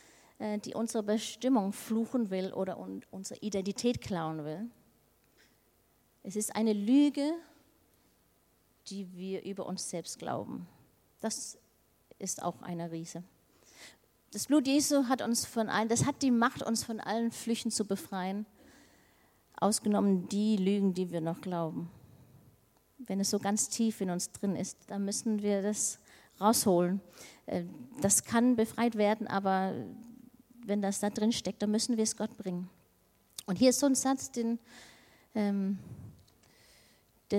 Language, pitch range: German, 180-225 Hz